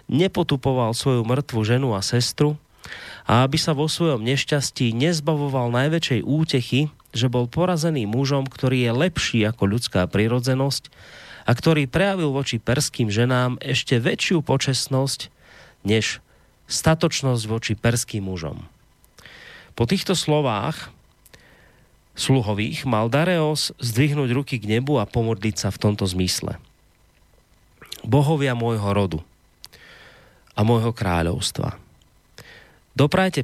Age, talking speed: 30-49, 110 wpm